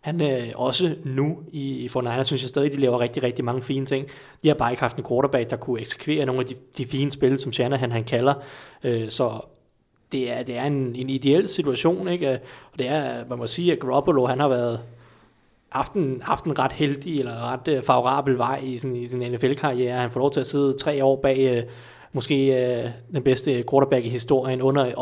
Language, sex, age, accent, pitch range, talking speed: Danish, male, 30-49, native, 125-140 Hz, 230 wpm